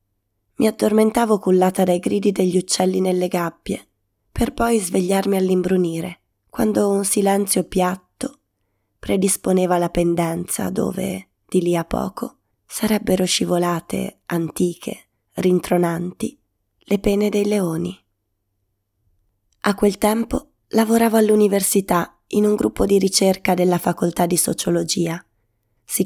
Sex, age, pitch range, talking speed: female, 20-39, 170-195 Hz, 110 wpm